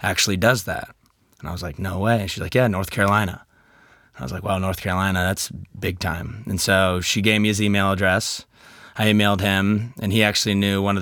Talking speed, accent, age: 225 wpm, American, 20-39